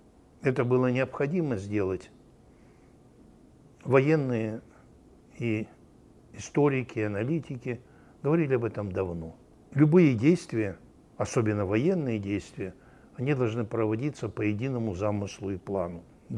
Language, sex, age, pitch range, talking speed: Russian, male, 60-79, 105-130 Hz, 100 wpm